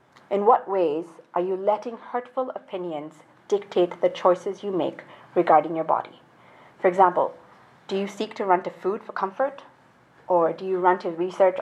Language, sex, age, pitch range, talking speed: English, female, 30-49, 180-225 Hz, 170 wpm